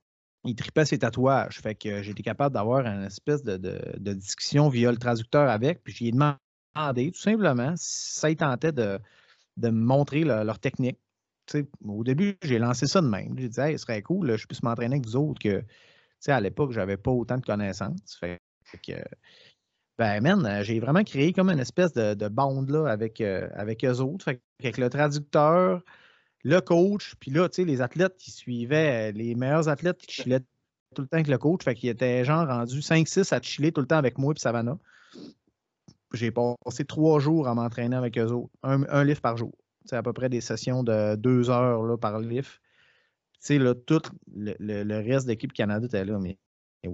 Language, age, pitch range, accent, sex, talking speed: French, 30-49, 115-150 Hz, Canadian, male, 210 wpm